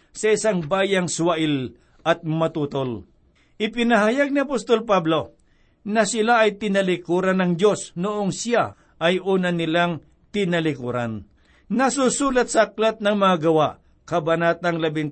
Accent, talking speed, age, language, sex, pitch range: native, 115 wpm, 60-79, Filipino, male, 150-195 Hz